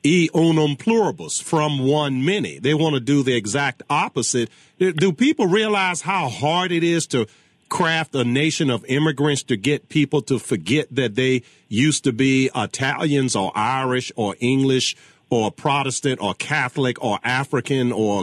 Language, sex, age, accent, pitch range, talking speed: English, male, 40-59, American, 130-170 Hz, 160 wpm